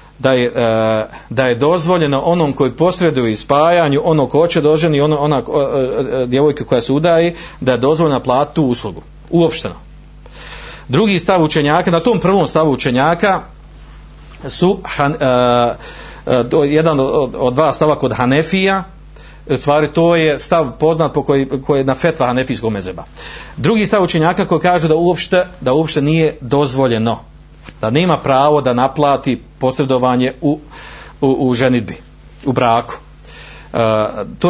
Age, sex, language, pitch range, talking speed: 40-59, male, Croatian, 130-170 Hz, 140 wpm